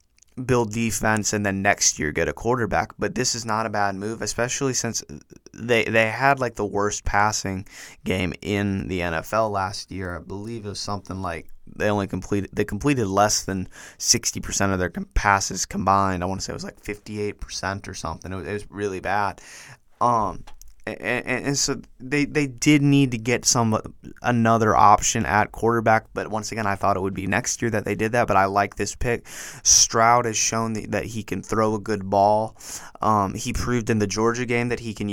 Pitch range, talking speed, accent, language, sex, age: 100-115 Hz, 205 wpm, American, English, male, 20-39